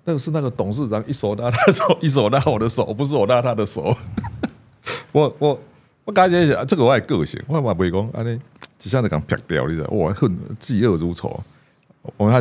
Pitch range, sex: 100-145 Hz, male